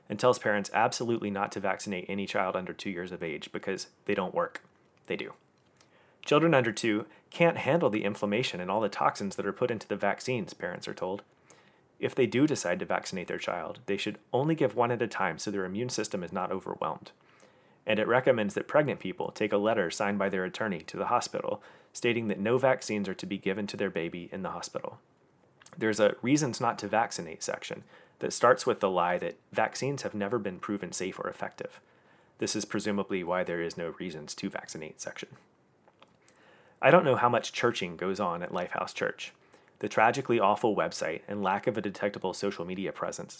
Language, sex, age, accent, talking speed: English, male, 30-49, American, 205 wpm